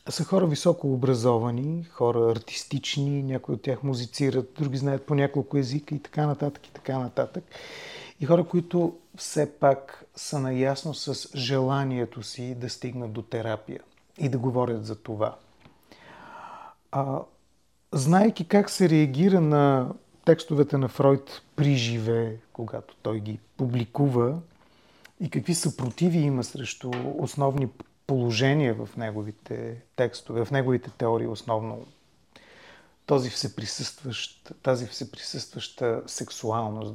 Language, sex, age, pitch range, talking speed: Bulgarian, male, 40-59, 120-150 Hz, 115 wpm